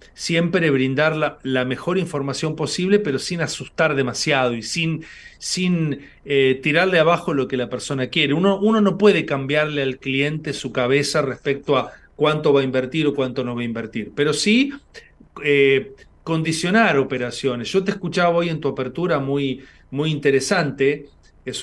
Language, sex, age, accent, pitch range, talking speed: Spanish, male, 40-59, Argentinian, 130-165 Hz, 165 wpm